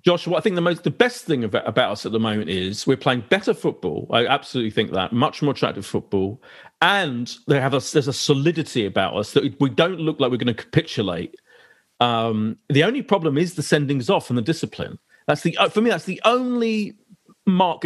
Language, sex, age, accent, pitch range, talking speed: English, male, 40-59, British, 120-175 Hz, 210 wpm